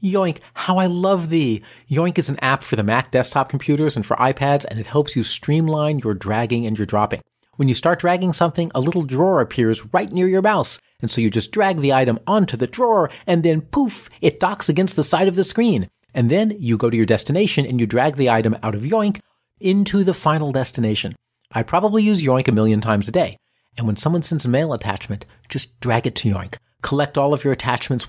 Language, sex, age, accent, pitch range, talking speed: English, male, 40-59, American, 115-160 Hz, 225 wpm